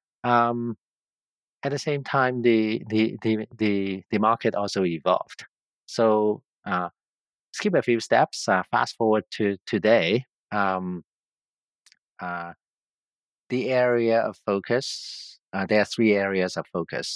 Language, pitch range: English, 95-115 Hz